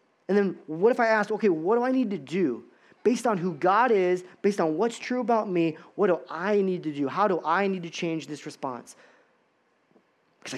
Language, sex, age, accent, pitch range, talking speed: English, male, 20-39, American, 150-205 Hz, 220 wpm